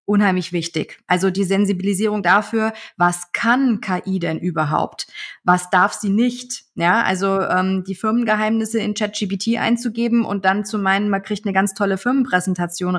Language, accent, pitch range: German, German, 190-225 Hz